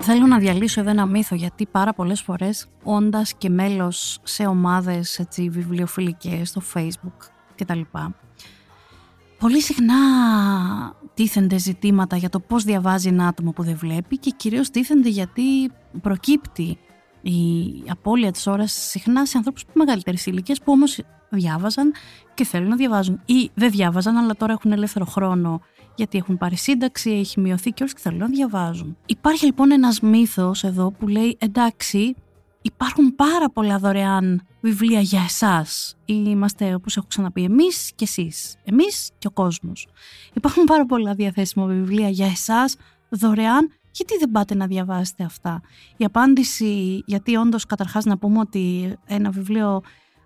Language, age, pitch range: Greek, 30-49, 185-235 Hz